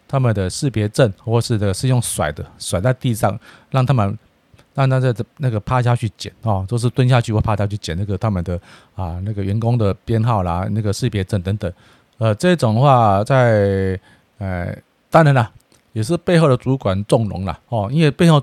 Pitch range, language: 100-130 Hz, Chinese